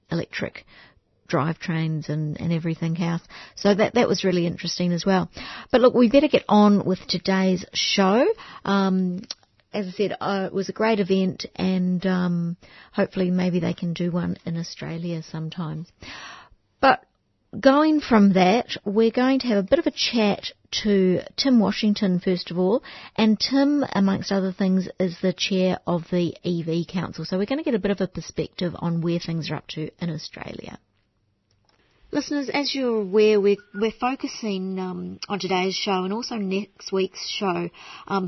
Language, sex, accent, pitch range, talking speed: English, female, Australian, 175-205 Hz, 170 wpm